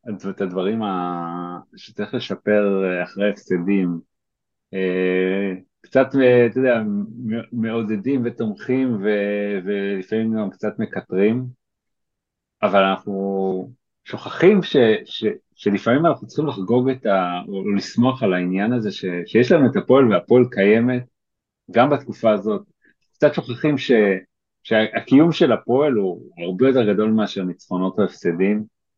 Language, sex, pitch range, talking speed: Hebrew, male, 95-120 Hz, 115 wpm